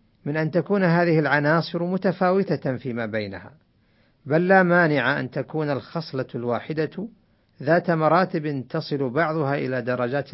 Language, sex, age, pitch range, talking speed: Arabic, male, 50-69, 115-155 Hz, 120 wpm